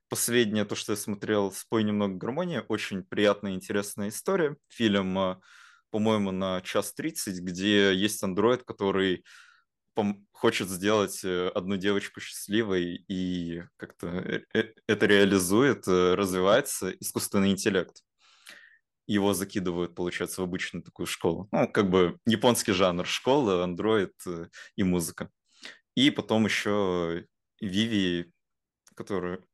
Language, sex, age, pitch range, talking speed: Russian, male, 20-39, 95-105 Hz, 110 wpm